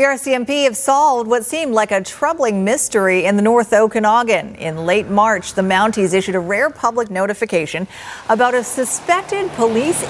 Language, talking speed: English, 165 wpm